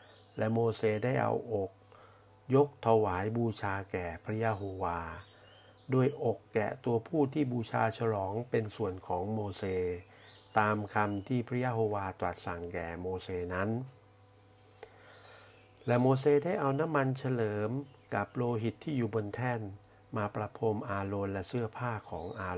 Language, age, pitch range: Thai, 60-79, 100-120 Hz